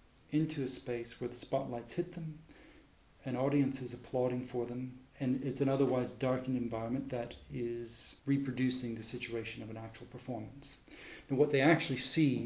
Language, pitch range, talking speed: English, 120-140 Hz, 165 wpm